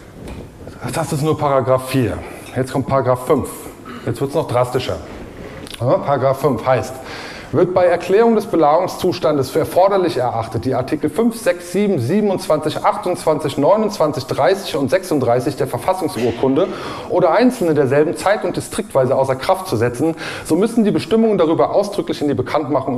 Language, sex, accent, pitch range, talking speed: German, male, German, 120-175 Hz, 150 wpm